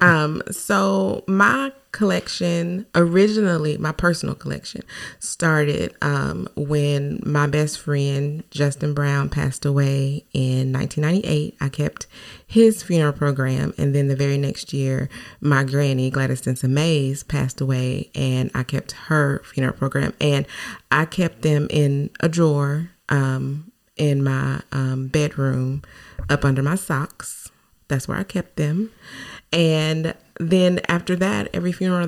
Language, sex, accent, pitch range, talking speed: English, female, American, 135-155 Hz, 130 wpm